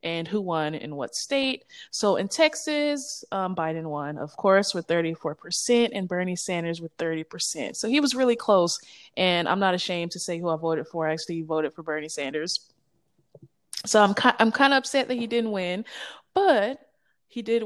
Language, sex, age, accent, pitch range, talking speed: English, female, 20-39, American, 165-220 Hz, 185 wpm